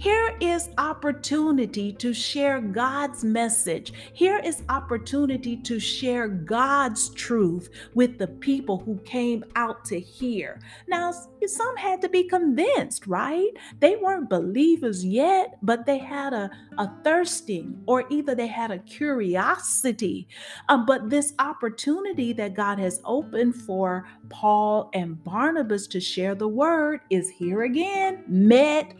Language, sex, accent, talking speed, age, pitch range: English, female, American, 135 wpm, 40-59, 200-285 Hz